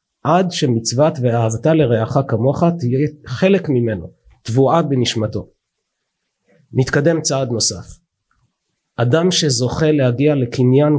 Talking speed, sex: 95 wpm, male